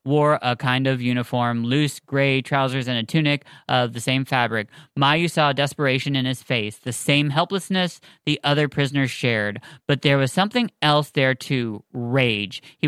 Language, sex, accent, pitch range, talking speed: English, male, American, 120-150 Hz, 170 wpm